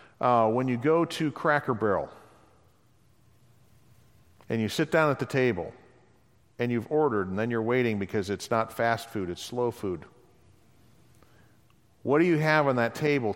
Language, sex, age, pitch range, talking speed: English, male, 40-59, 110-130 Hz, 160 wpm